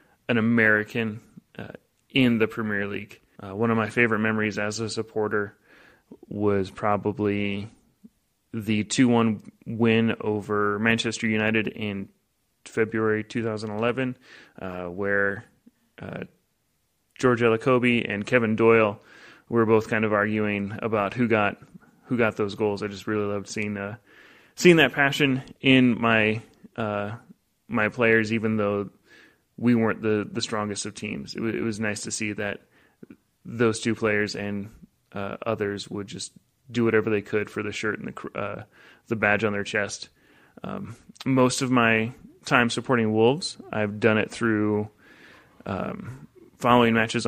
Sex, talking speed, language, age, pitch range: male, 145 wpm, English, 30-49, 105-115 Hz